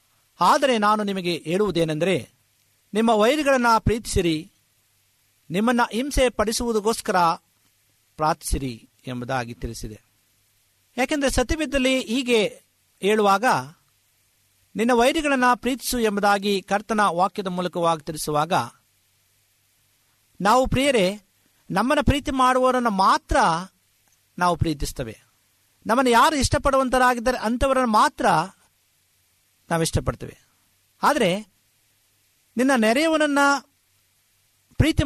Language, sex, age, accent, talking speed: Kannada, male, 50-69, native, 75 wpm